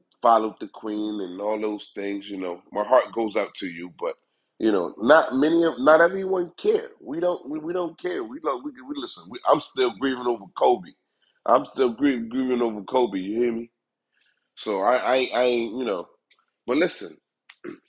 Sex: male